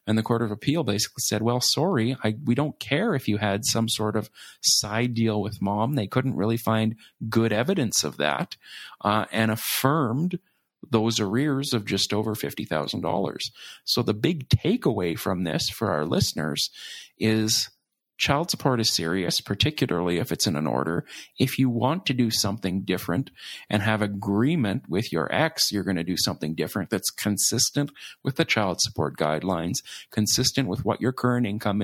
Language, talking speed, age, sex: English, 175 wpm, 40-59, male